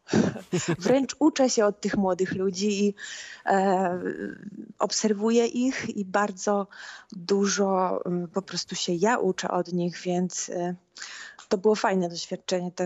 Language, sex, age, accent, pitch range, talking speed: Polish, female, 20-39, native, 190-220 Hz, 115 wpm